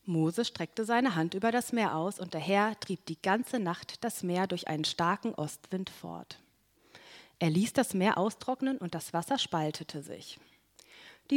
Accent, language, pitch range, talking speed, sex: German, German, 170-230 Hz, 175 wpm, female